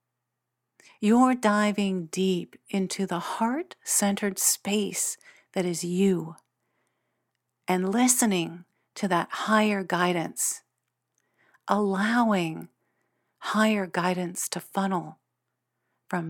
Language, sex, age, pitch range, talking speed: English, female, 50-69, 180-220 Hz, 80 wpm